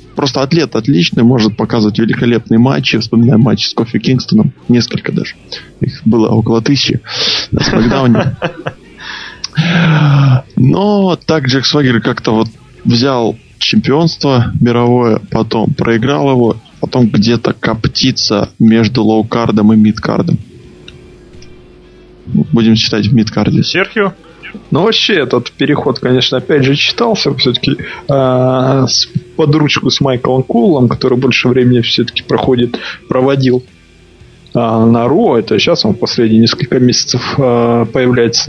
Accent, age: native, 20-39